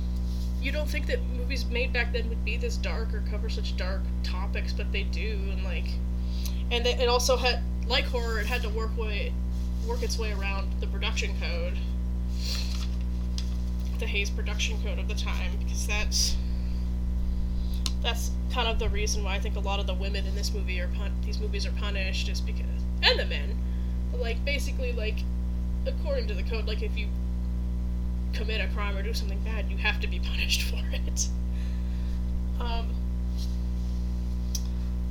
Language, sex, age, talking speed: English, female, 10-29, 170 wpm